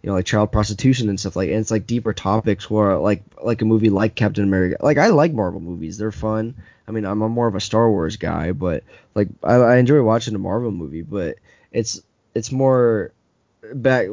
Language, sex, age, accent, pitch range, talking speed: English, male, 10-29, American, 95-110 Hz, 225 wpm